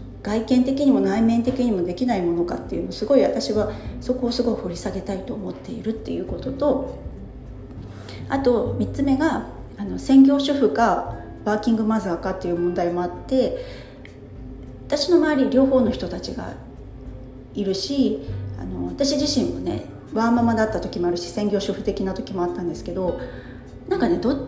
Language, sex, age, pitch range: Japanese, female, 40-59, 190-280 Hz